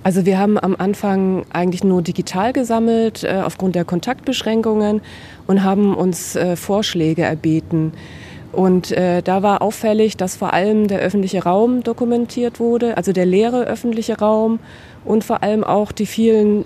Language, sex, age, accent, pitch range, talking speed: German, female, 20-39, German, 175-205 Hz, 145 wpm